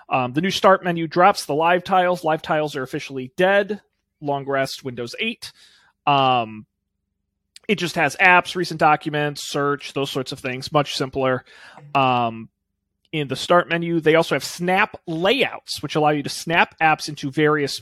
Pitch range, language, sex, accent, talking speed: 130-170 Hz, English, male, American, 170 wpm